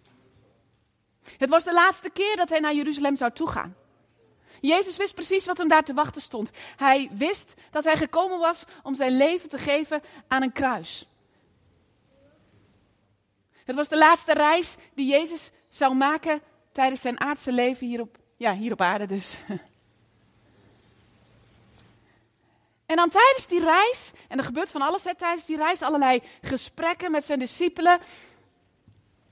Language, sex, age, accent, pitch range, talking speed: Dutch, female, 30-49, Dutch, 225-335 Hz, 140 wpm